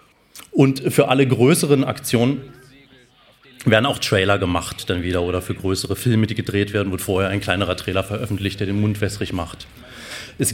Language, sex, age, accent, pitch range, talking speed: German, male, 30-49, German, 105-130 Hz, 170 wpm